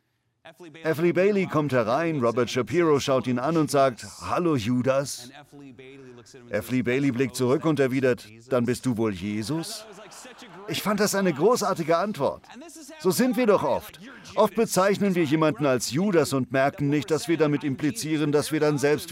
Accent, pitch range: German, 130-190 Hz